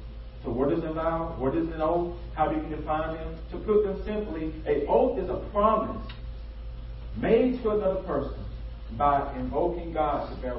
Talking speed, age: 180 wpm, 40-59